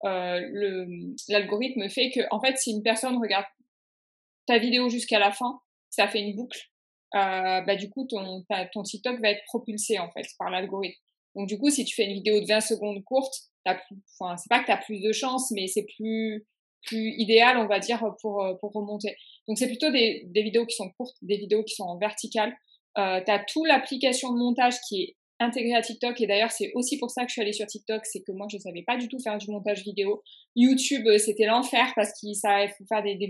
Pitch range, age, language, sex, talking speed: 205-245 Hz, 20-39, French, female, 225 wpm